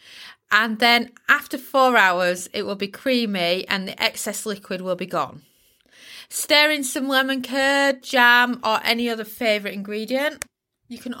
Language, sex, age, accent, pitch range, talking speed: English, female, 20-39, British, 200-250 Hz, 155 wpm